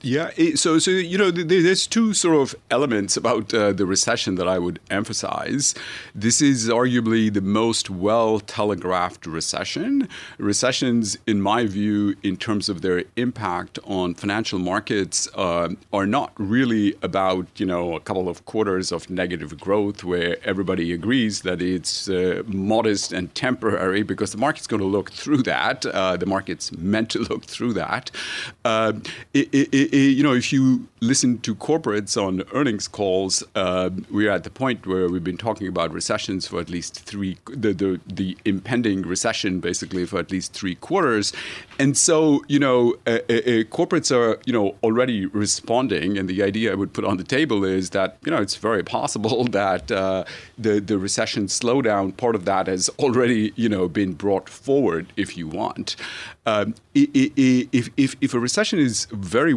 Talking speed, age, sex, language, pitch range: 175 wpm, 40-59, male, English, 95-125 Hz